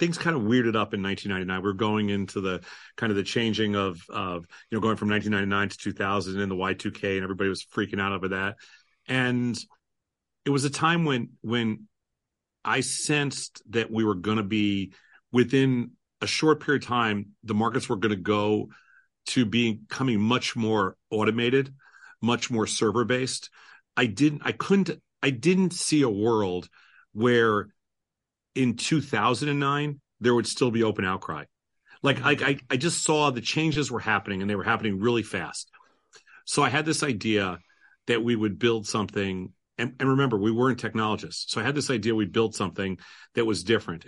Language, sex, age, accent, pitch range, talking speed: English, male, 40-59, American, 105-130 Hz, 180 wpm